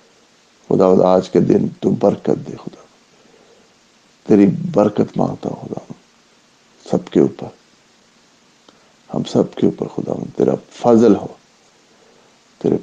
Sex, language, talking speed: male, English, 105 wpm